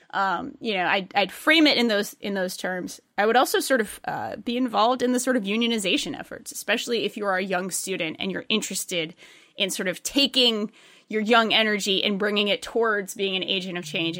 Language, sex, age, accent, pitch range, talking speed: English, female, 20-39, American, 190-250 Hz, 220 wpm